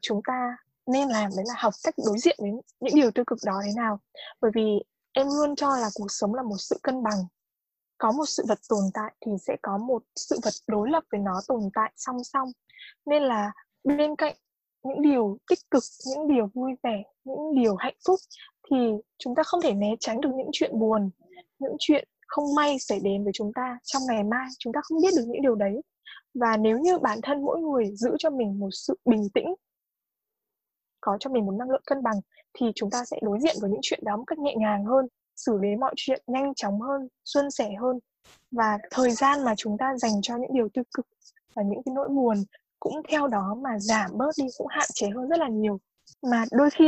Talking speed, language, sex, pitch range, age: 230 wpm, Vietnamese, female, 215-285 Hz, 10-29